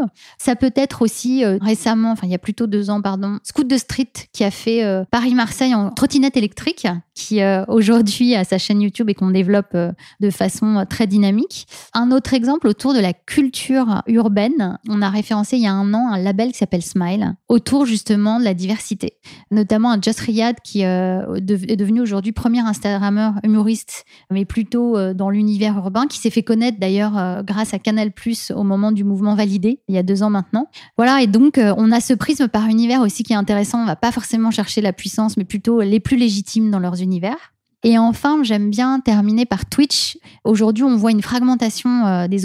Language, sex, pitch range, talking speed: French, female, 205-240 Hz, 210 wpm